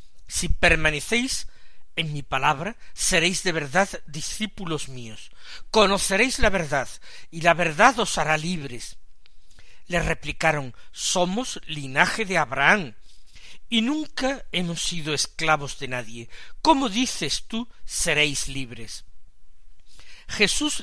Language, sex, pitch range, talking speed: Spanish, male, 130-200 Hz, 110 wpm